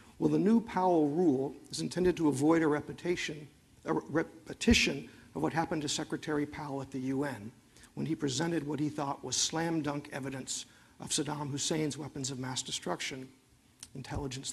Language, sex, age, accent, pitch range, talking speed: English, male, 50-69, American, 130-165 Hz, 160 wpm